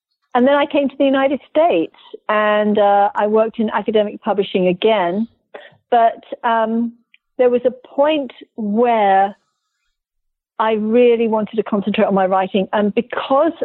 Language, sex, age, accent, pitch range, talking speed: English, female, 50-69, British, 195-230 Hz, 145 wpm